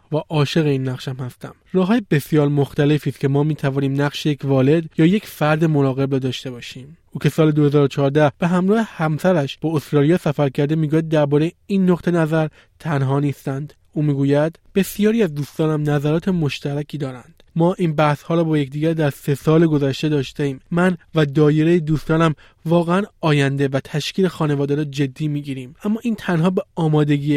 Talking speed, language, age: 175 wpm, Persian, 20-39